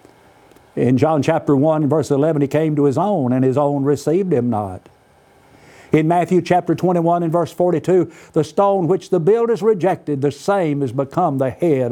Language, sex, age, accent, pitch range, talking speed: English, male, 60-79, American, 125-175 Hz, 180 wpm